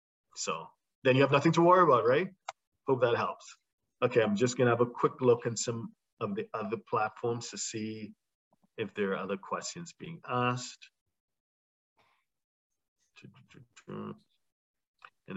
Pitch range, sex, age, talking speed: 85-125 Hz, male, 50-69, 140 wpm